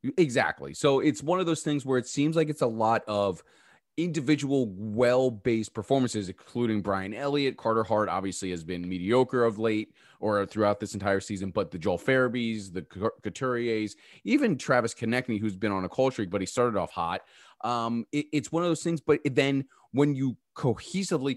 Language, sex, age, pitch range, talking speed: English, male, 30-49, 100-140 Hz, 185 wpm